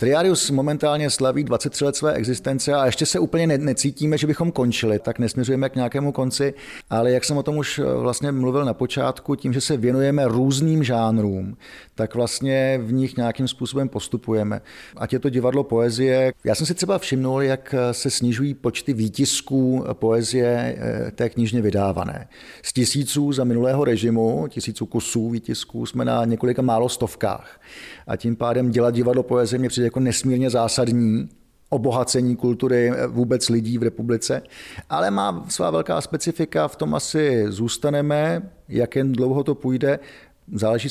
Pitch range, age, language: 115-135 Hz, 40-59, Czech